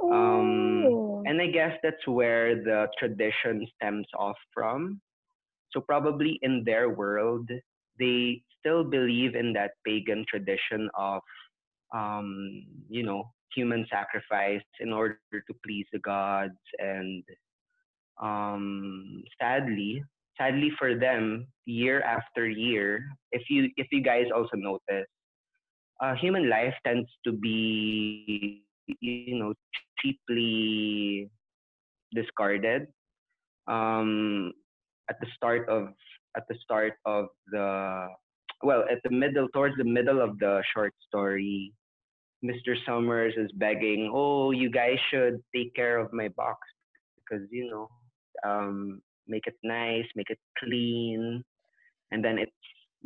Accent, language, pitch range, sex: Filipino, English, 105-130 Hz, male